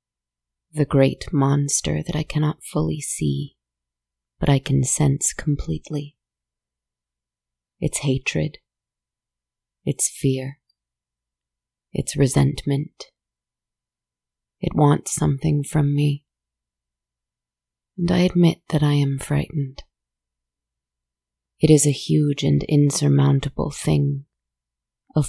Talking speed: 95 wpm